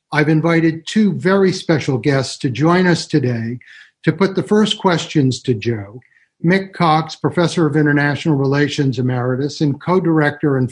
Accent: American